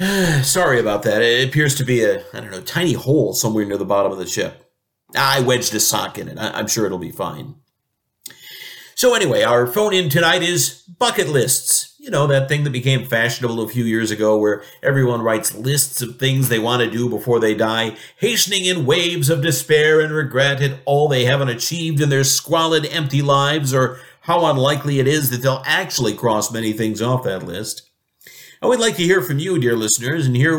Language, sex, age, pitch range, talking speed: English, male, 50-69, 115-160 Hz, 210 wpm